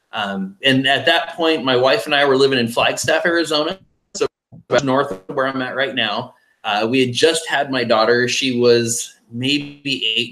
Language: English